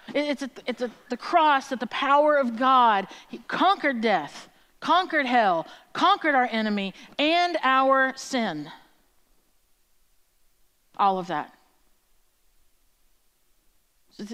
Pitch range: 230-305 Hz